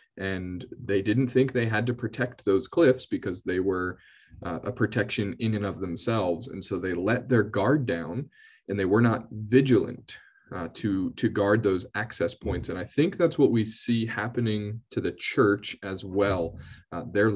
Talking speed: 185 wpm